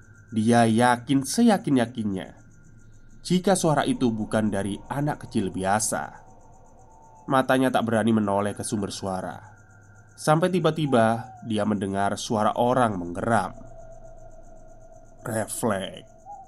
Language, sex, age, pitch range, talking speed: Indonesian, male, 20-39, 110-135 Hz, 95 wpm